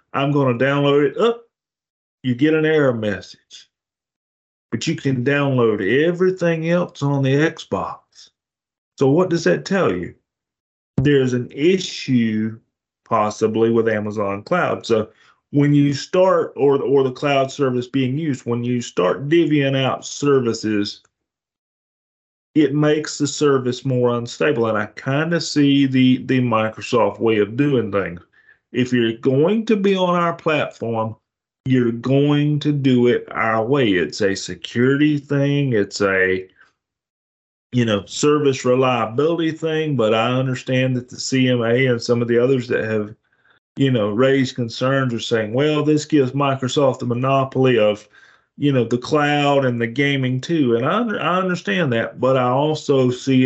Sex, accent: male, American